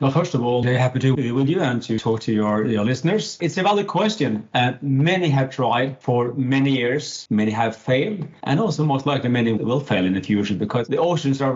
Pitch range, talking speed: 110-140 Hz, 240 wpm